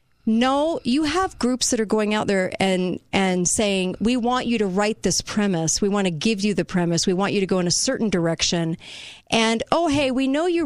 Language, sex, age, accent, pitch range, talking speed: English, female, 40-59, American, 190-265 Hz, 230 wpm